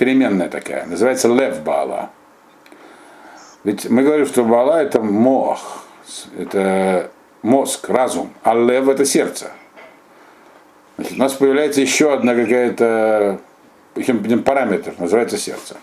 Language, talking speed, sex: Russian, 110 wpm, male